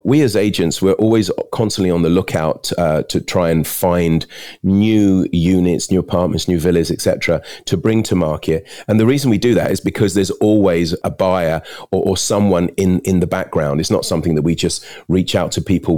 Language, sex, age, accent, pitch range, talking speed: English, male, 40-59, British, 85-105 Hz, 205 wpm